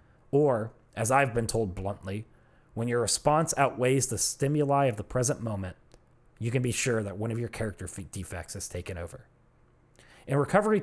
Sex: male